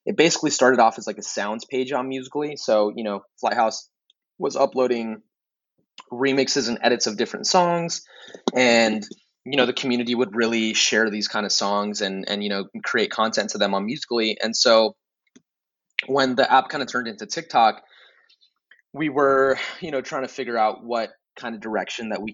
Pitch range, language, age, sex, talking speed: 110-145 Hz, English, 20-39, male, 185 wpm